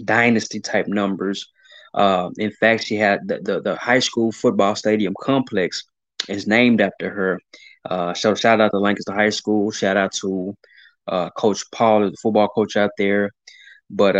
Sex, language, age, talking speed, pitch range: male, English, 20-39, 170 wpm, 100-130 Hz